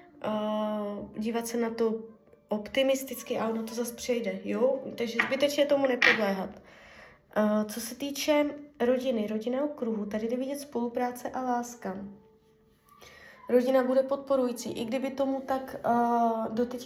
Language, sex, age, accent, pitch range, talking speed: Czech, female, 20-39, native, 210-245 Hz, 125 wpm